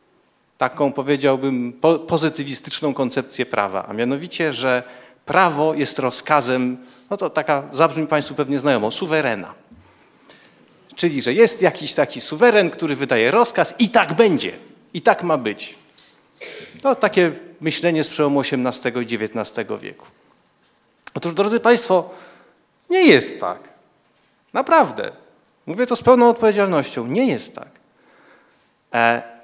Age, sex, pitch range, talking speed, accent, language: 40-59, male, 140-215 Hz, 120 wpm, native, Polish